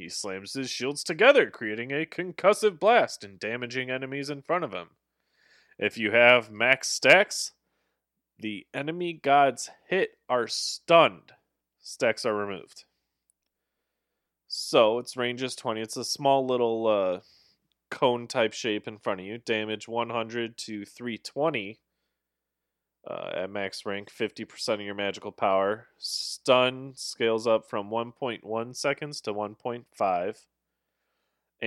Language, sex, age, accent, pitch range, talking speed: English, male, 20-39, American, 100-125 Hz, 130 wpm